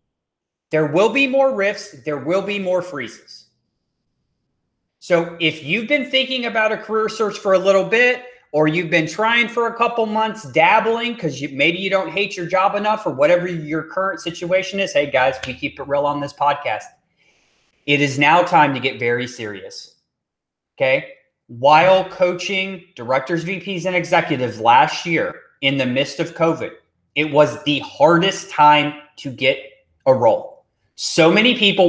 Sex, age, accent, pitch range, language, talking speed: male, 30-49, American, 150-215 Hz, English, 170 wpm